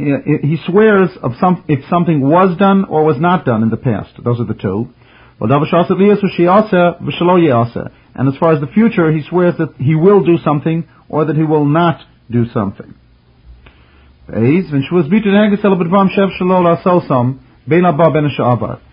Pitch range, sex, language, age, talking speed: 120-175 Hz, male, English, 40-59, 125 wpm